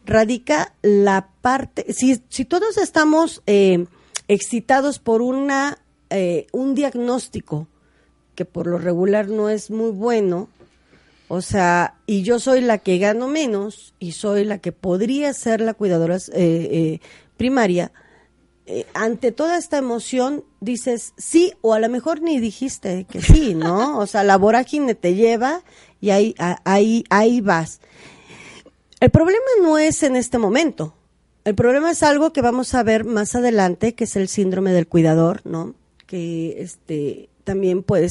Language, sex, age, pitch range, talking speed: Spanish, female, 40-59, 180-245 Hz, 155 wpm